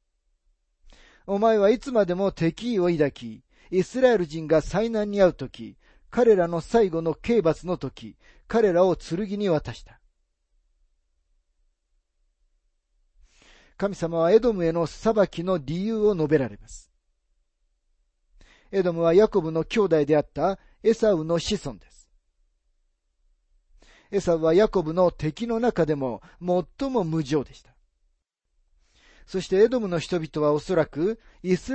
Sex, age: male, 40-59